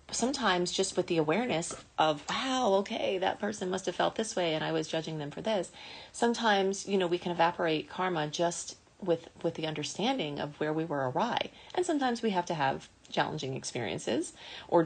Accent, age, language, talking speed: American, 30-49, English, 195 wpm